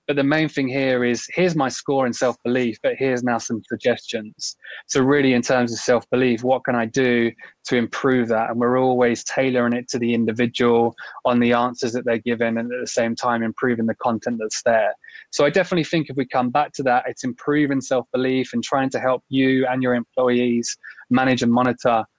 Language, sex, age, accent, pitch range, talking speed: English, male, 20-39, British, 120-135 Hz, 210 wpm